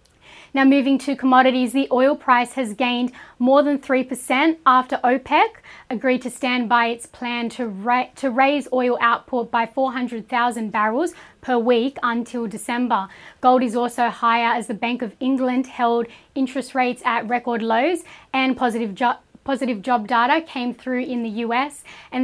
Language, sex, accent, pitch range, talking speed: English, female, Australian, 235-265 Hz, 160 wpm